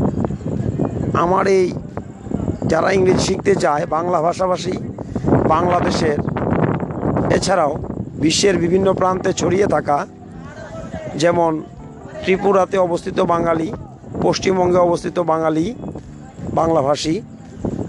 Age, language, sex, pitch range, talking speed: 50-69, Bengali, male, 160-195 Hz, 75 wpm